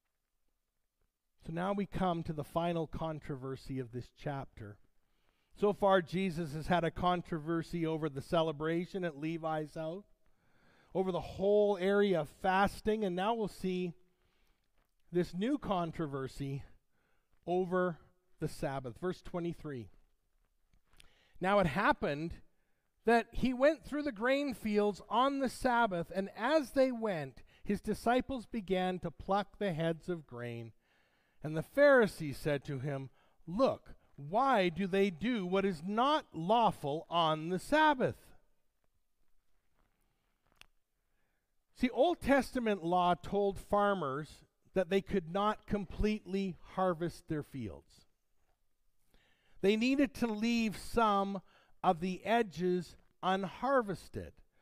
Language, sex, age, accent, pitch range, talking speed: English, male, 40-59, American, 160-210 Hz, 120 wpm